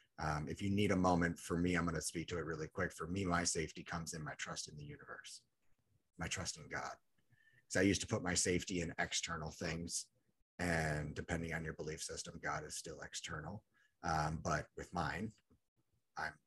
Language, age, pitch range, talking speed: English, 30-49, 85-110 Hz, 205 wpm